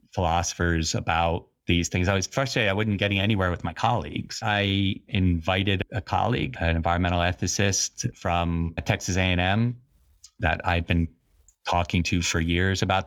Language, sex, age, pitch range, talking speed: English, male, 30-49, 85-110 Hz, 150 wpm